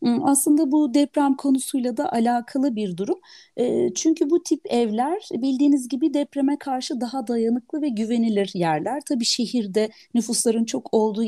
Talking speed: 140 wpm